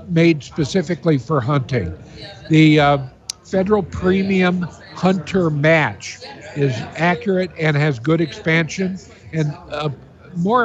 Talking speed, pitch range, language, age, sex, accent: 105 wpm, 130-175 Hz, English, 60-79, male, American